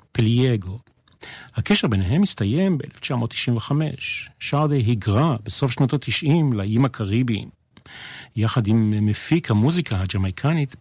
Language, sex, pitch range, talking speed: Hebrew, male, 105-140 Hz, 95 wpm